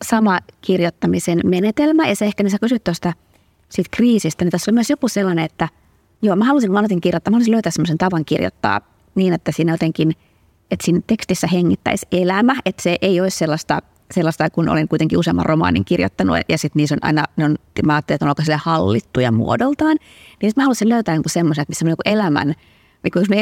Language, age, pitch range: Finnish, 30-49, 155-190 Hz